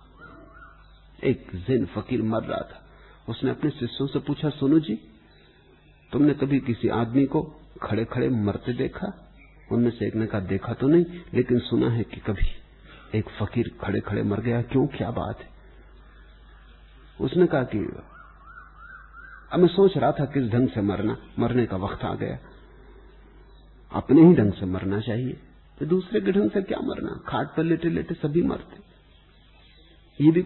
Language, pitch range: English, 115-165 Hz